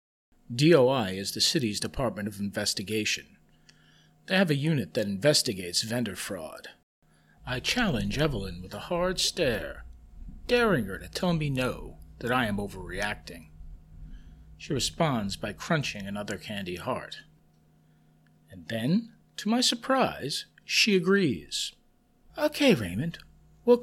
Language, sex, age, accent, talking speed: English, male, 50-69, American, 125 wpm